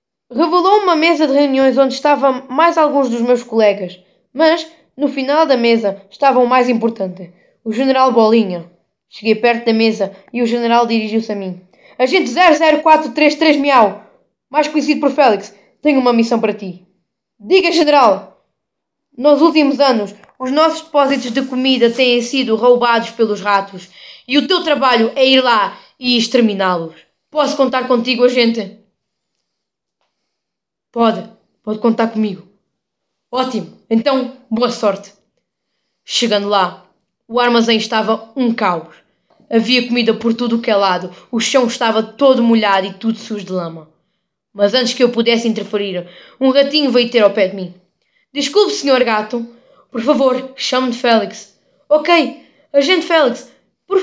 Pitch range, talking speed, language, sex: 215-285 Hz, 145 wpm, Portuguese, female